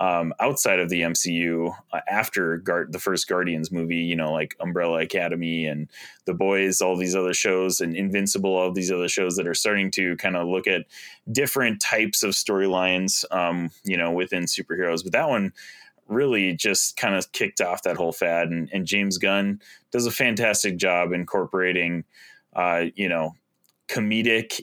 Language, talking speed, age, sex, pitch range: English, 170 wpm, 30-49, male, 85-105 Hz